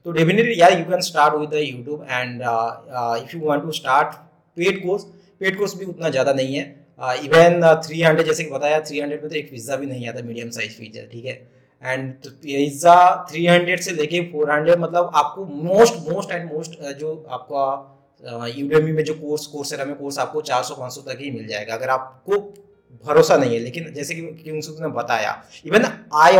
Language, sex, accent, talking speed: Hindi, male, native, 195 wpm